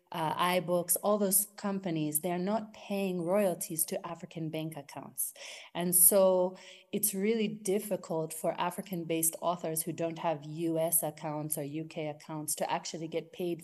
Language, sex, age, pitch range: English, female, 30-49, 160-195 Hz